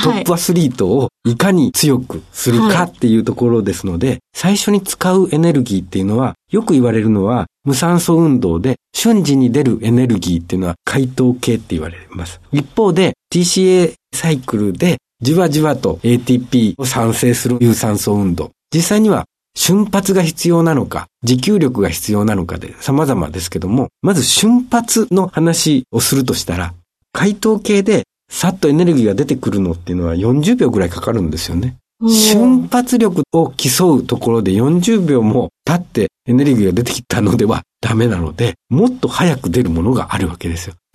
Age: 50-69